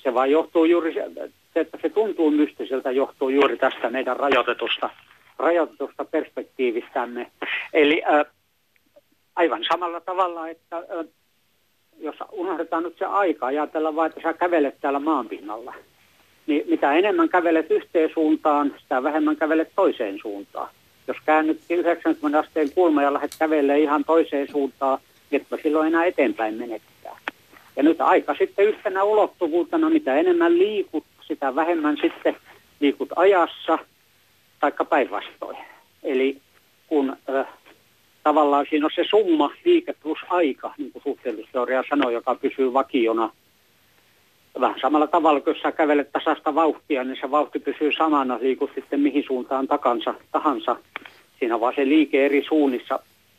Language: Finnish